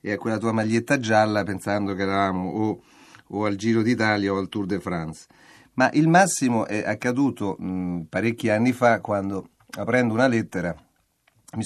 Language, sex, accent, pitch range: Italian, male, native, 95-120 Hz